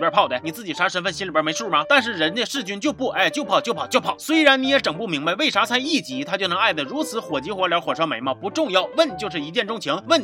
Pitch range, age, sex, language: 185-275 Hz, 30-49, male, Chinese